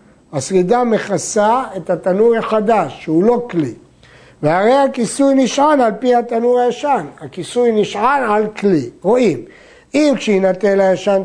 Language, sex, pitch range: Hebrew, male, 180-230 Hz